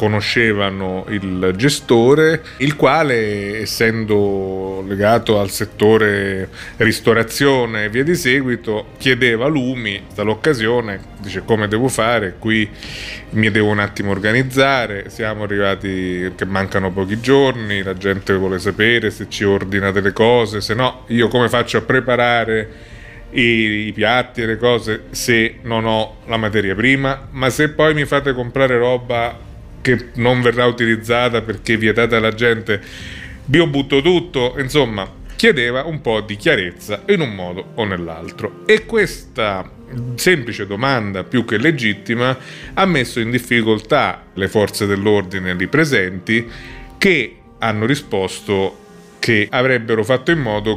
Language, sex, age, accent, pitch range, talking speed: Italian, male, 30-49, native, 105-125 Hz, 135 wpm